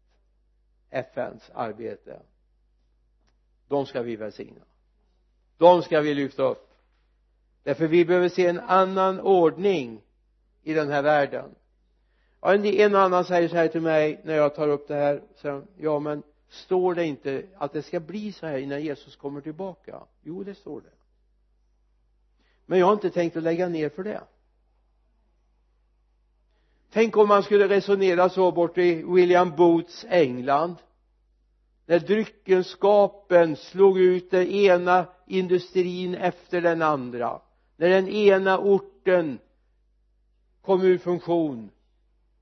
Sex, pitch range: male, 145-180 Hz